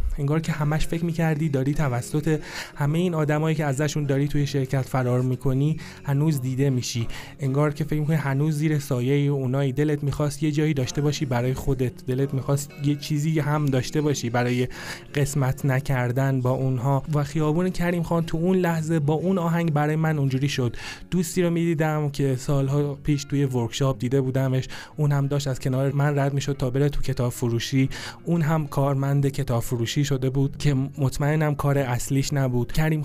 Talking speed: 170 wpm